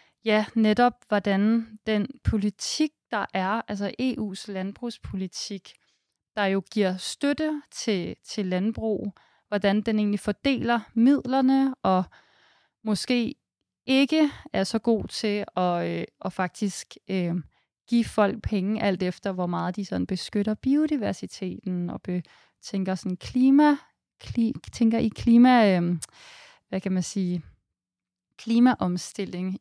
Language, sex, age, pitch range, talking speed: Danish, female, 20-39, 185-230 Hz, 110 wpm